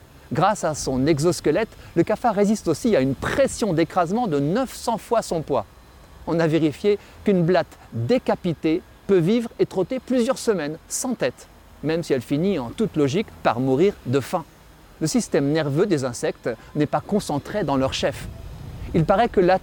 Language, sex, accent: French, male, French